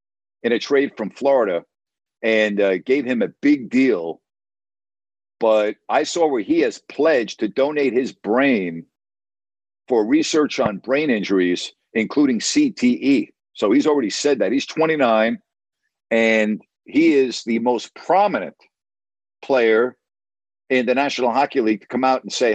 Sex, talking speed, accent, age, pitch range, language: male, 145 wpm, American, 50-69, 100-135 Hz, English